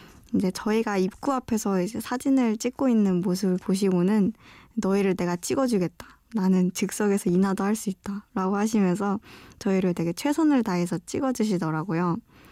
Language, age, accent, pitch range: Korean, 20-39, native, 180-215 Hz